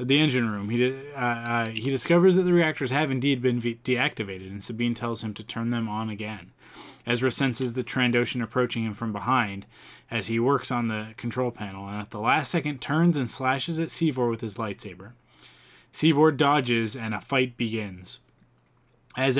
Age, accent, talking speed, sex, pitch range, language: 20-39, American, 185 wpm, male, 115-140 Hz, English